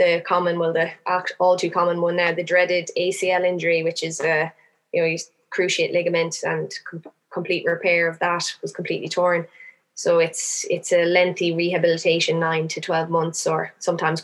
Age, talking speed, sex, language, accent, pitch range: 20-39, 175 wpm, female, English, Irish, 170-180 Hz